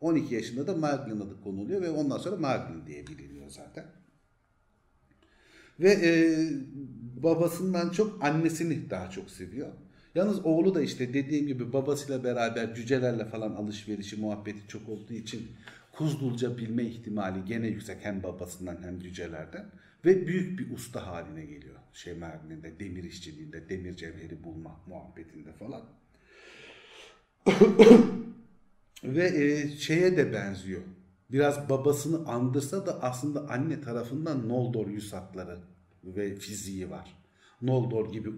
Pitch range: 95-145 Hz